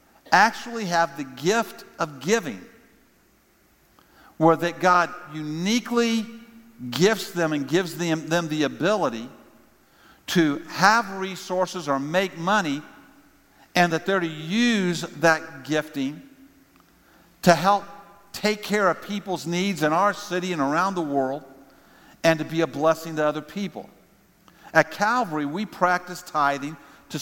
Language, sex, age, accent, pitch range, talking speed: English, male, 50-69, American, 155-195 Hz, 130 wpm